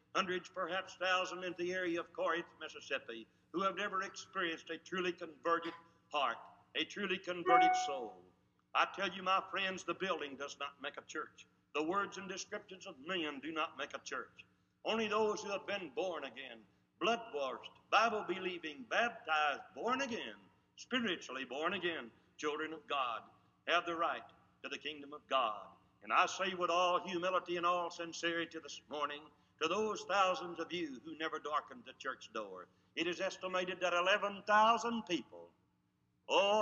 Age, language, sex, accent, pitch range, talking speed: 60-79, English, male, American, 140-190 Hz, 160 wpm